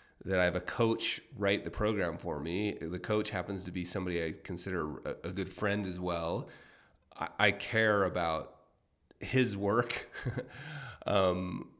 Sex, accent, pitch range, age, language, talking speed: male, American, 85-105 Hz, 30-49, English, 145 wpm